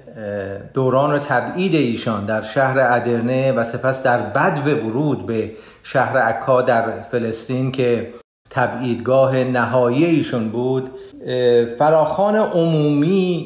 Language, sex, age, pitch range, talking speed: Persian, male, 40-59, 120-145 Hz, 105 wpm